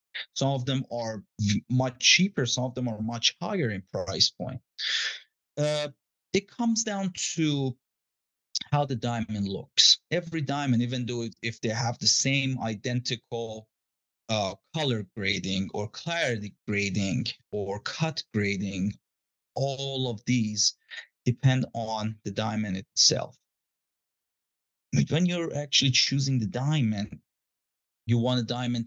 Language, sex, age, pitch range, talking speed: English, male, 30-49, 105-125 Hz, 130 wpm